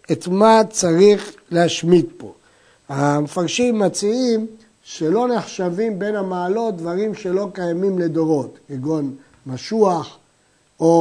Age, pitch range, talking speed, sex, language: 60-79, 165-225 Hz, 100 wpm, male, Hebrew